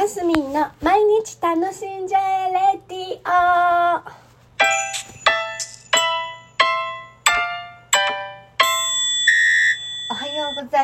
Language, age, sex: Japanese, 40-59, female